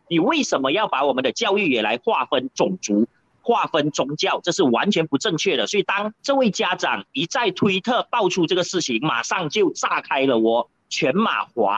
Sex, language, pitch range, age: male, Chinese, 160-255 Hz, 30-49